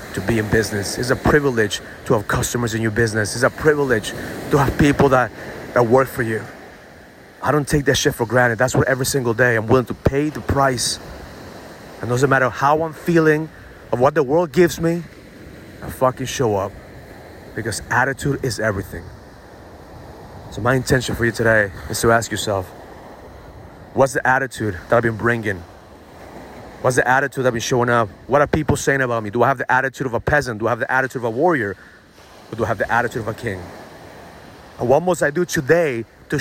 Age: 30-49